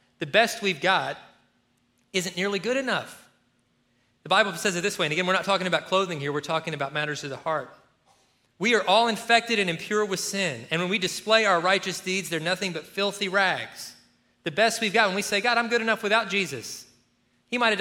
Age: 30-49